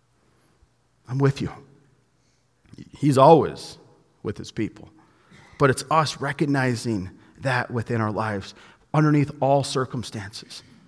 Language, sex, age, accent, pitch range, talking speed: English, male, 40-59, American, 140-190 Hz, 105 wpm